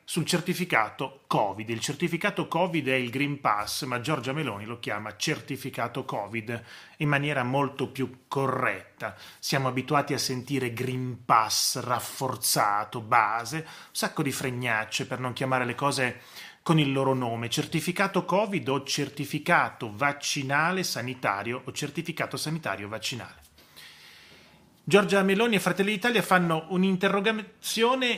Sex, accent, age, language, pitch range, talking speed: male, native, 30-49, Italian, 130-185 Hz, 130 wpm